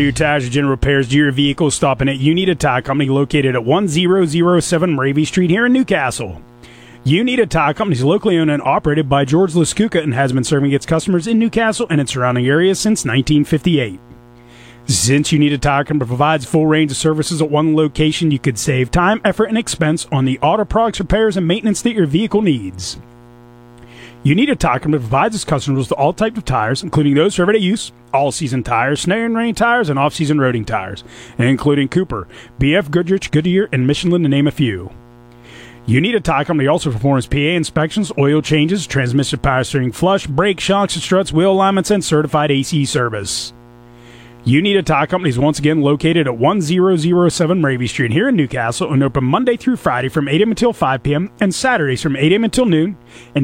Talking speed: 205 wpm